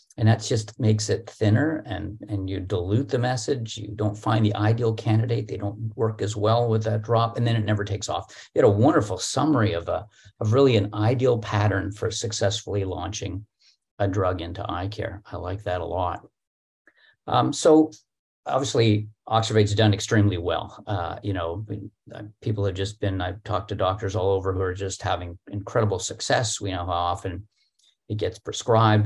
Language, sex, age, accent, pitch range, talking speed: English, male, 50-69, American, 100-115 Hz, 185 wpm